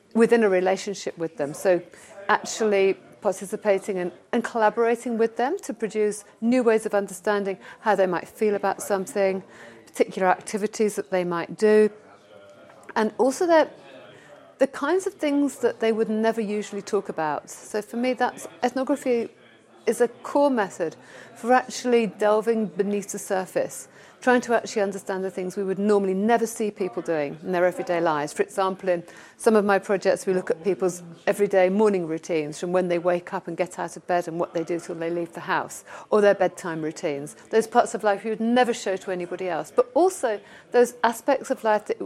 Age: 40-59